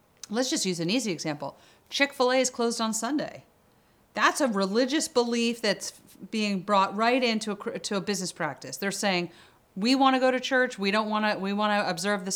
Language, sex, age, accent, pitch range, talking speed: English, female, 40-59, American, 175-230 Hz, 175 wpm